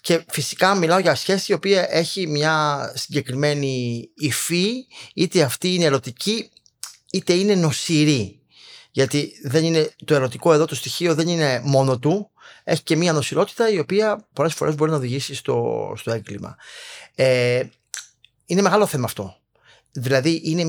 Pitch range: 130-180 Hz